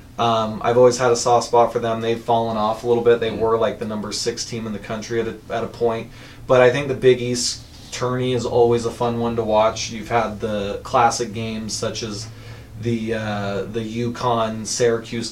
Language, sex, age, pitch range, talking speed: English, male, 20-39, 115-130 Hz, 215 wpm